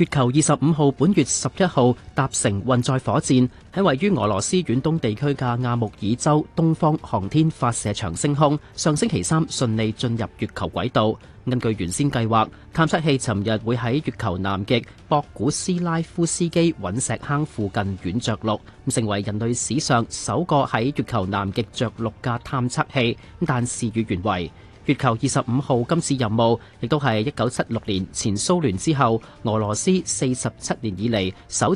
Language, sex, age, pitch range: Chinese, male, 30-49, 110-145 Hz